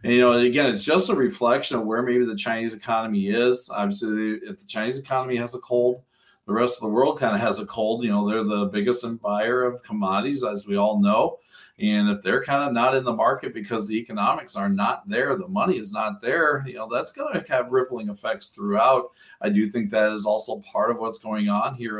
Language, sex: English, male